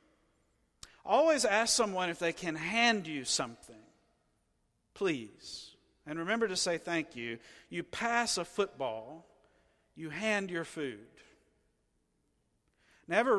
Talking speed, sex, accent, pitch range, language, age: 110 wpm, male, American, 140-180 Hz, English, 50-69